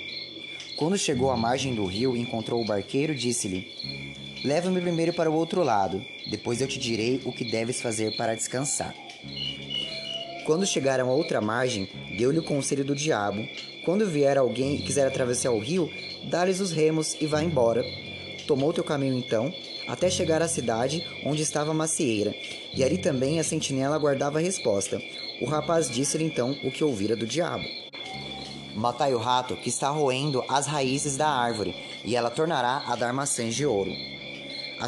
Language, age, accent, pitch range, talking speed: Portuguese, 20-39, Brazilian, 115-150 Hz, 170 wpm